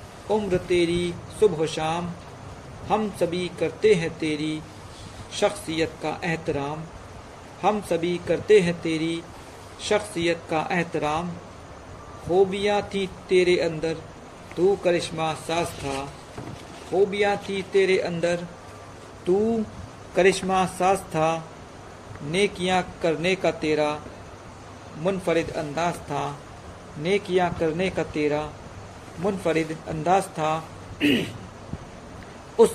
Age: 50-69